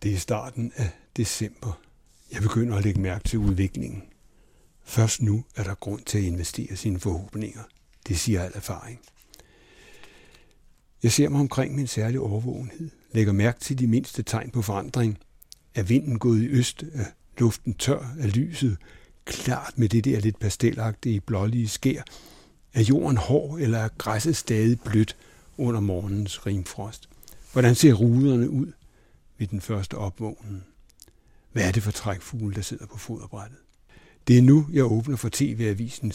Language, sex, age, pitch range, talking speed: Danish, male, 60-79, 100-125 Hz, 155 wpm